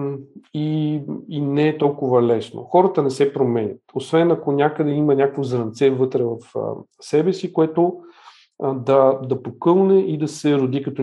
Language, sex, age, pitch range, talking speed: Bulgarian, male, 40-59, 130-160 Hz, 160 wpm